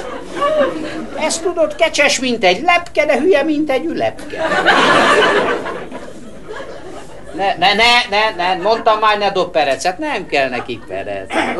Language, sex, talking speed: Hungarian, male, 130 wpm